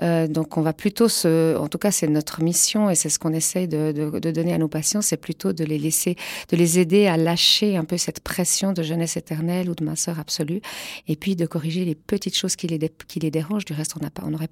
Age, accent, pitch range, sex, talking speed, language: 40-59, French, 170-210 Hz, female, 250 wpm, French